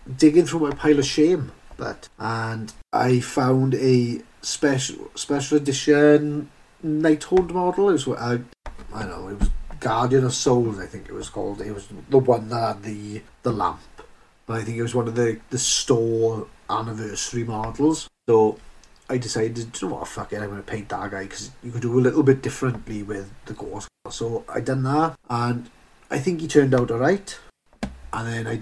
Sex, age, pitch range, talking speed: male, 30-49, 115-145 Hz, 195 wpm